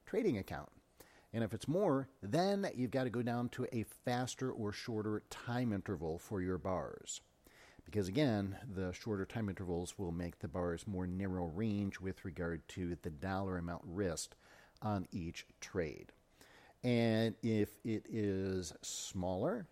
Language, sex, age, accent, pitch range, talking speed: English, male, 50-69, American, 95-125 Hz, 150 wpm